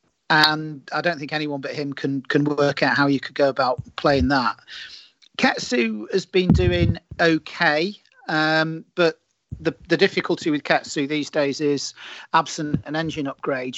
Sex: male